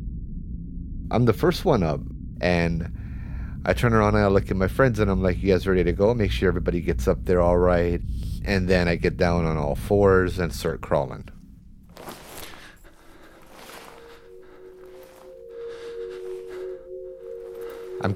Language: English